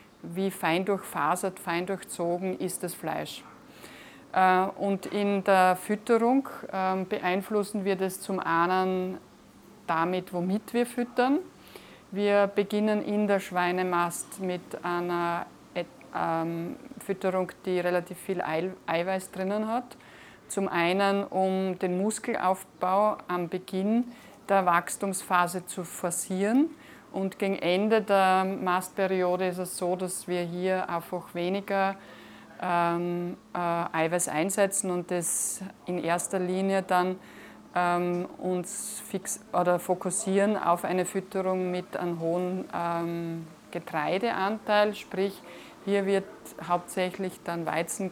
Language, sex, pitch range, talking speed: German, female, 175-200 Hz, 105 wpm